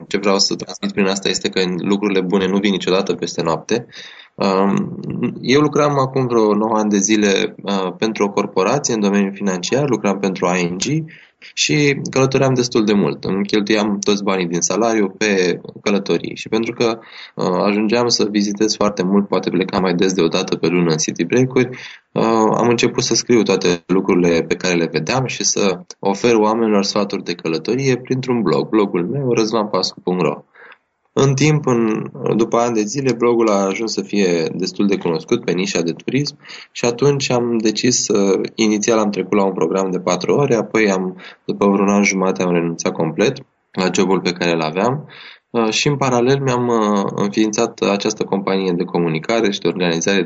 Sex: male